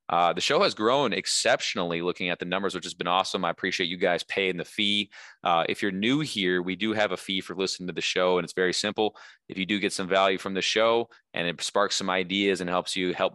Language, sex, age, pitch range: English, male, 20-39, 90-105 Hz